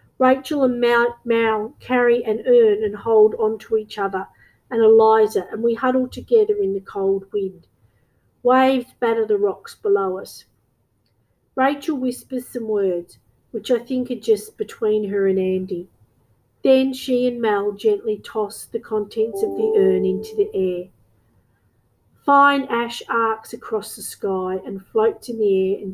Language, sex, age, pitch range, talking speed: English, female, 50-69, 185-245 Hz, 155 wpm